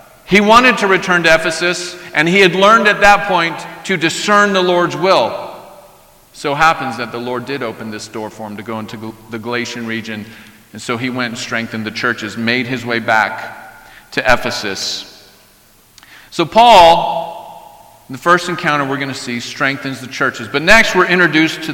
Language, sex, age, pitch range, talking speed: English, male, 40-59, 130-175 Hz, 190 wpm